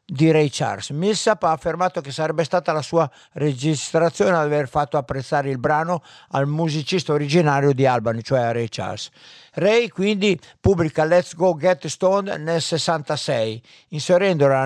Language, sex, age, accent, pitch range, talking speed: Italian, male, 60-79, native, 140-175 Hz, 150 wpm